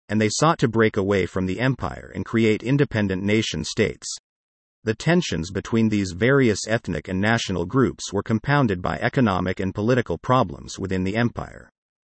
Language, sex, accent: English, male, American